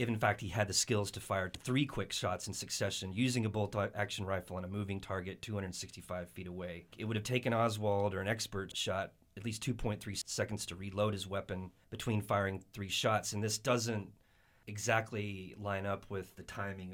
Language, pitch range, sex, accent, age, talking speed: English, 95-115 Hz, male, American, 30-49, 200 wpm